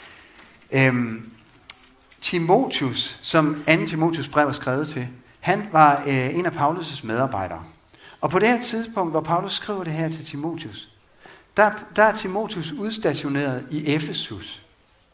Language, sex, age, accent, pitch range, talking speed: Danish, male, 60-79, native, 125-170 Hz, 130 wpm